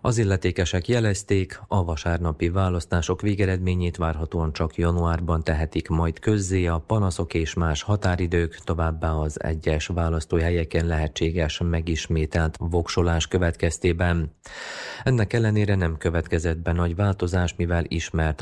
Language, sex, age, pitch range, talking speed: Hungarian, male, 30-49, 80-90 Hz, 115 wpm